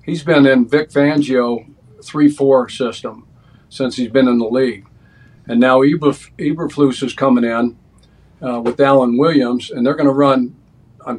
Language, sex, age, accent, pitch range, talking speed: English, male, 50-69, American, 125-145 Hz, 155 wpm